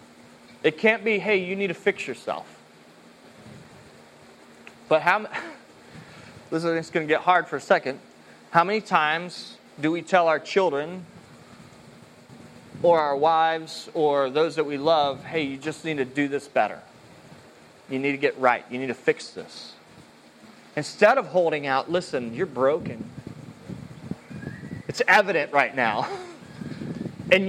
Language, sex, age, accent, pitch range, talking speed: English, male, 30-49, American, 155-220 Hz, 150 wpm